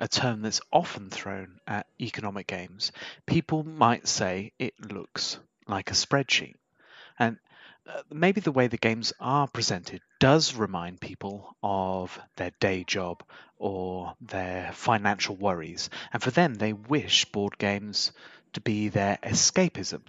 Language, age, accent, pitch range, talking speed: English, 30-49, British, 100-130 Hz, 135 wpm